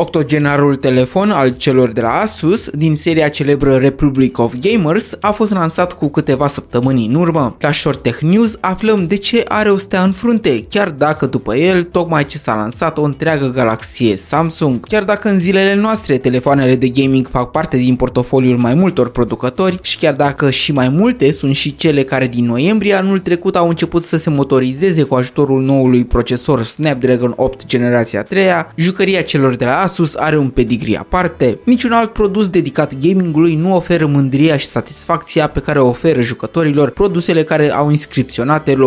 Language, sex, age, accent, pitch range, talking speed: Romanian, male, 20-39, native, 130-175 Hz, 180 wpm